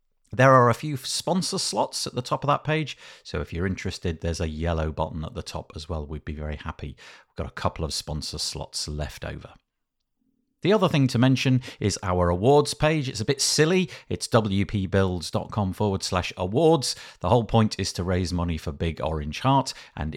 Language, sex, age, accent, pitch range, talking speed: English, male, 50-69, British, 90-130 Hz, 200 wpm